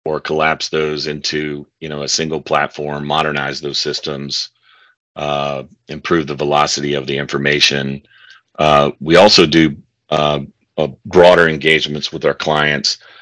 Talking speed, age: 135 wpm, 40-59